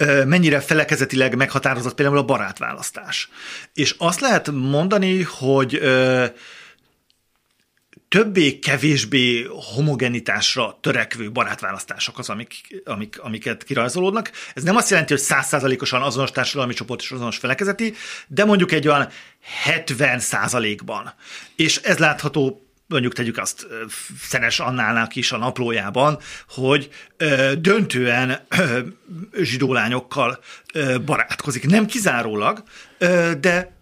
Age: 40-59